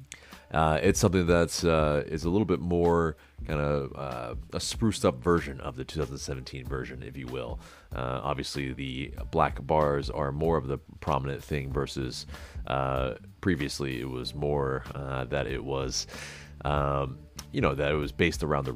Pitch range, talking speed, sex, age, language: 70-90 Hz, 175 wpm, male, 30-49, English